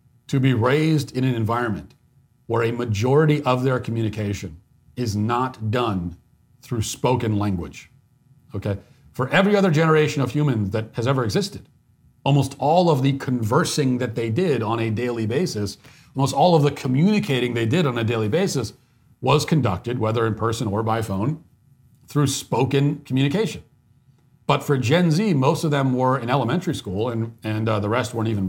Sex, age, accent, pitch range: male, 40-59, American, 115-140 Hz